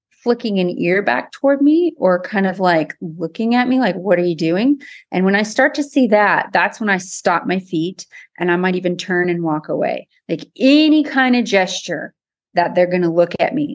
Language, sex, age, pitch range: English, female, 30-49, 170-220 Hz